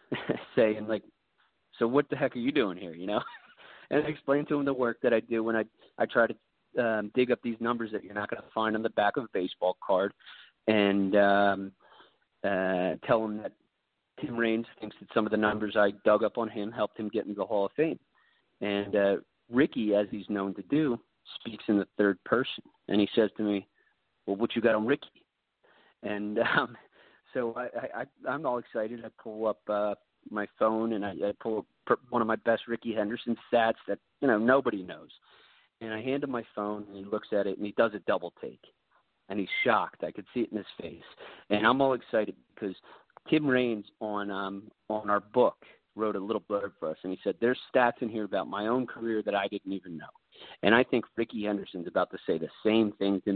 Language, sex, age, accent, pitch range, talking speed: English, male, 30-49, American, 100-115 Hz, 225 wpm